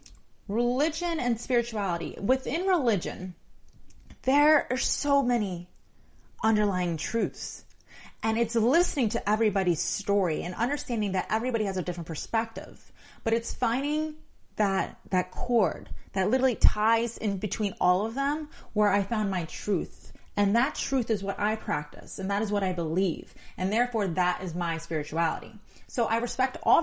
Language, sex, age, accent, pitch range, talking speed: English, female, 30-49, American, 190-240 Hz, 150 wpm